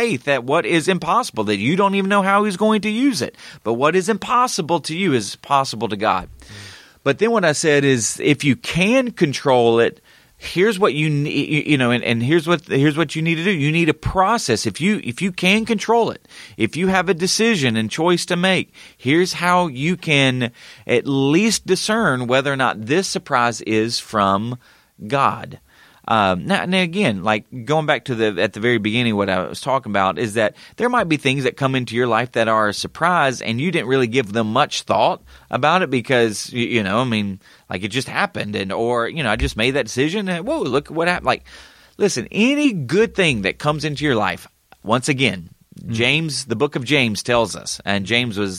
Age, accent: 30-49, American